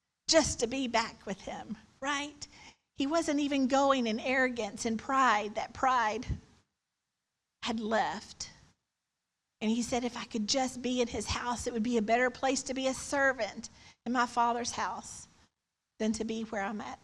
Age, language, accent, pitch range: 50-69, English, American, 220-260 Hz